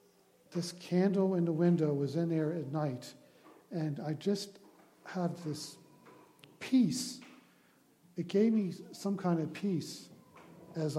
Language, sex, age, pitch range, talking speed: English, male, 50-69, 135-165 Hz, 130 wpm